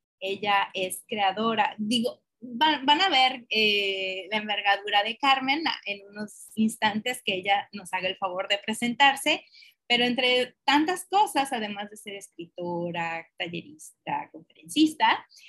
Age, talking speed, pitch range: 30-49, 130 wpm, 205-265 Hz